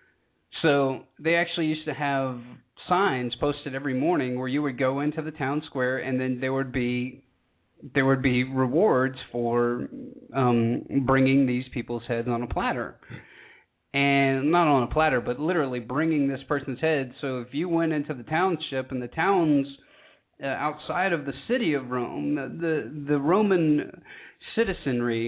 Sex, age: male, 30-49